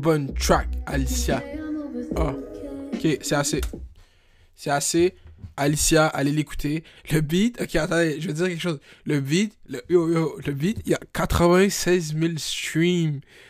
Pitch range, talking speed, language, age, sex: 100-155 Hz, 150 wpm, French, 20-39, male